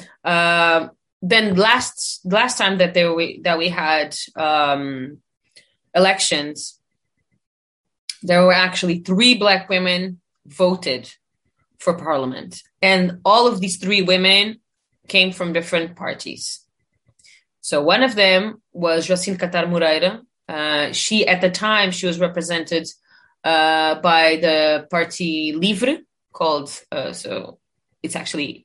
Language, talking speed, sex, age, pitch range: Italian, 120 wpm, female, 20-39, 160-195 Hz